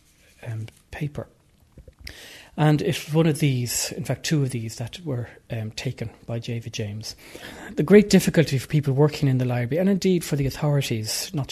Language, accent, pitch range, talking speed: English, Irish, 120-145 Hz, 175 wpm